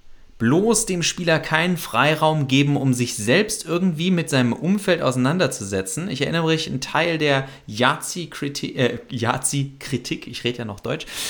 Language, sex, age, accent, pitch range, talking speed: German, male, 30-49, German, 120-165 Hz, 155 wpm